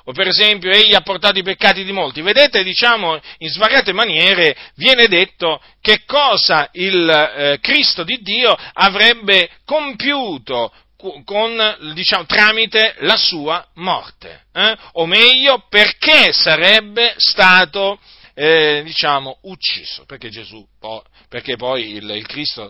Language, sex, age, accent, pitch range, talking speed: Italian, male, 40-59, native, 145-230 Hz, 130 wpm